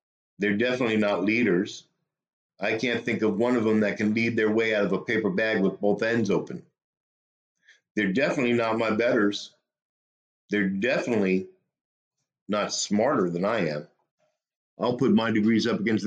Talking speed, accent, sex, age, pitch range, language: 160 wpm, American, male, 50-69, 95-120 Hz, English